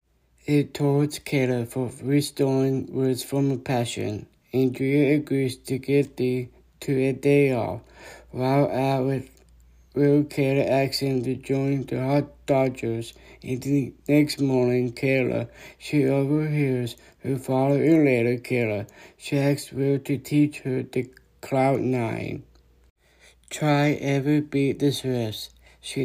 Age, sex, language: 60-79, male, English